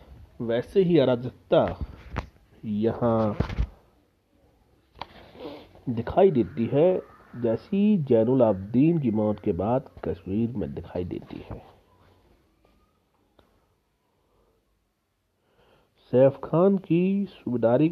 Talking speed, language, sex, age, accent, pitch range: 75 wpm, Hindi, male, 40-59, native, 105-140 Hz